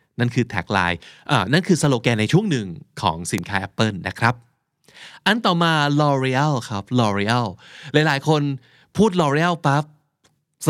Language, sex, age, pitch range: Thai, male, 20-39, 110-155 Hz